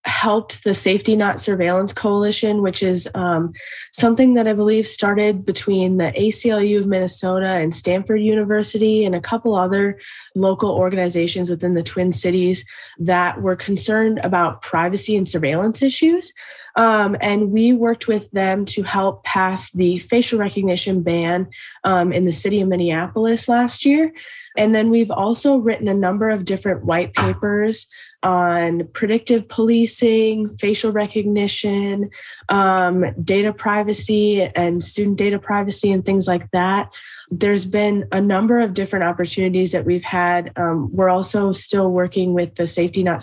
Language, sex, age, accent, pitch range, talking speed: English, female, 20-39, American, 180-210 Hz, 150 wpm